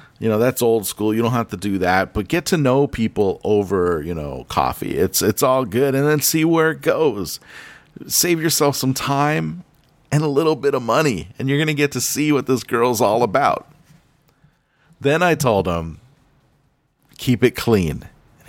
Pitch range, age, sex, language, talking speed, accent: 105-140 Hz, 40-59, male, English, 190 wpm, American